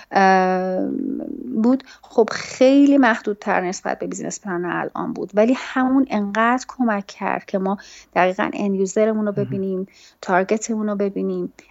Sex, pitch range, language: female, 195-235 Hz, Persian